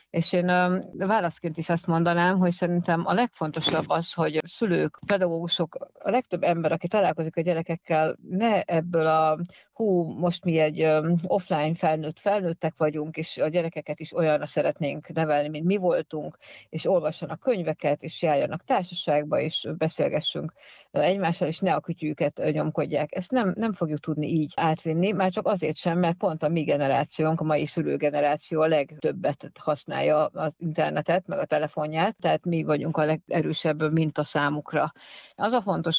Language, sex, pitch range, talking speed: Hungarian, female, 150-175 Hz, 155 wpm